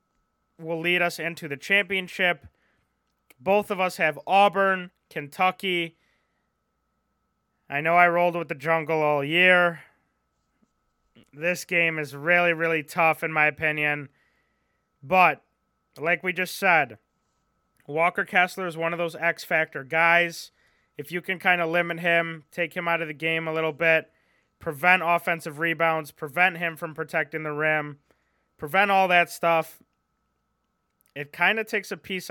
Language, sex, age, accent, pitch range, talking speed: English, male, 20-39, American, 150-175 Hz, 145 wpm